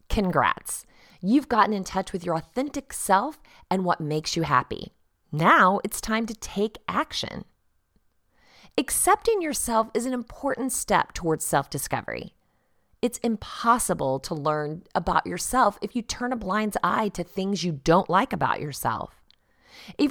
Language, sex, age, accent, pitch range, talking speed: English, female, 30-49, American, 165-245 Hz, 145 wpm